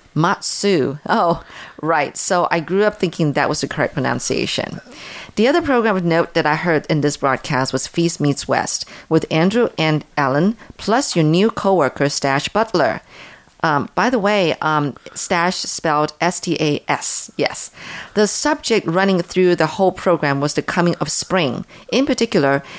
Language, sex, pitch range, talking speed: English, female, 150-185 Hz, 160 wpm